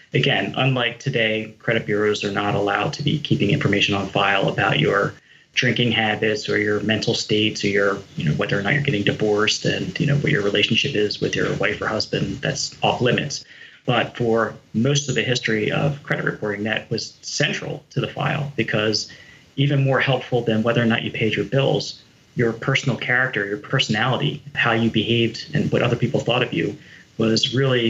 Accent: American